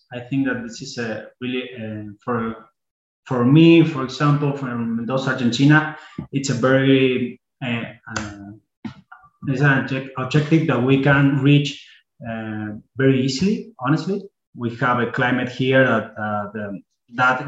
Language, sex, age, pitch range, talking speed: English, male, 20-39, 115-135 Hz, 135 wpm